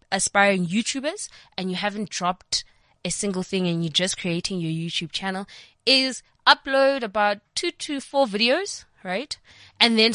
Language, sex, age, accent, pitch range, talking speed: English, female, 20-39, South African, 170-210 Hz, 155 wpm